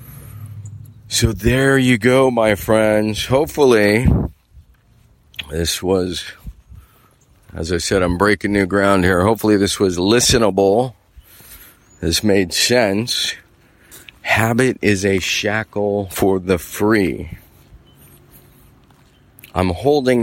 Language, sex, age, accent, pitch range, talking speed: English, male, 40-59, American, 95-115 Hz, 100 wpm